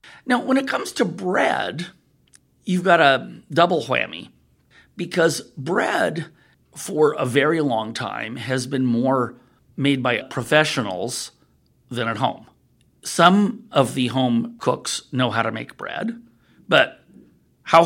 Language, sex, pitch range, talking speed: English, male, 125-175 Hz, 130 wpm